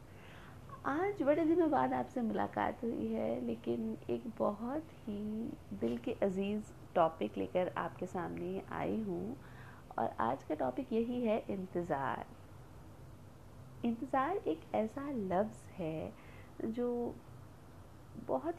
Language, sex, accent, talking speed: Hindi, female, native, 115 wpm